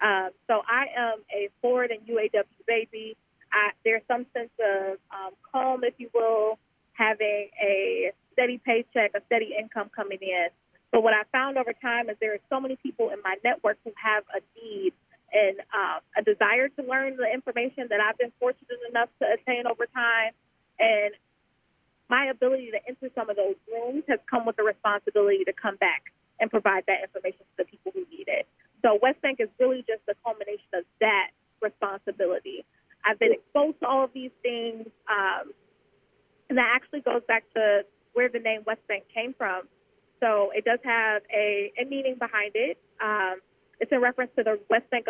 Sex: female